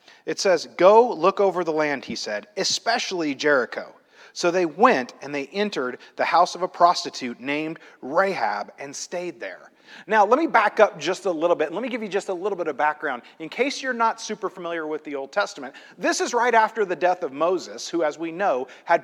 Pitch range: 175-225 Hz